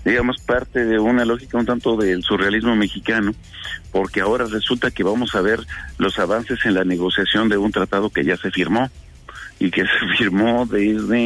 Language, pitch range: Spanish, 105-125 Hz